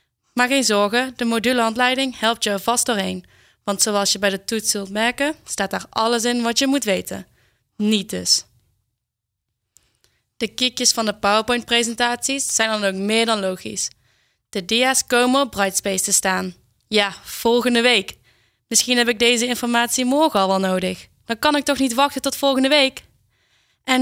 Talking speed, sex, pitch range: 170 wpm, female, 195-250 Hz